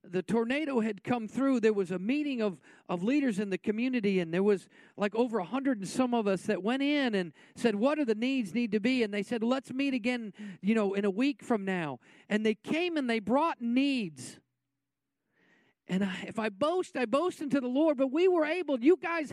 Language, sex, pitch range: English, male, 230-315 Hz